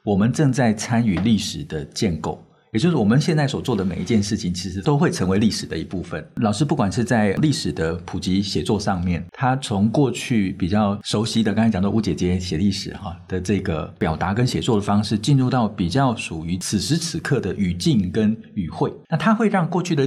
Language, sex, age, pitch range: Chinese, male, 50-69, 95-130 Hz